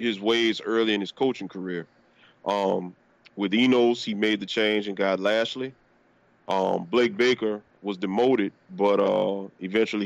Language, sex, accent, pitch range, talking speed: English, male, American, 105-130 Hz, 150 wpm